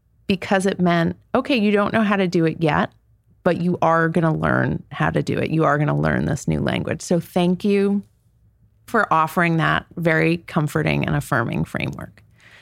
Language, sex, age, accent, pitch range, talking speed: English, female, 30-49, American, 120-180 Hz, 195 wpm